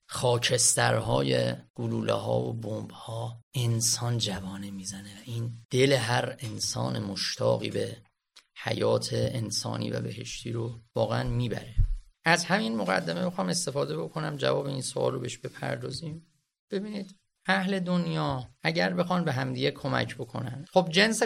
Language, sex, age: Persian, male, 30-49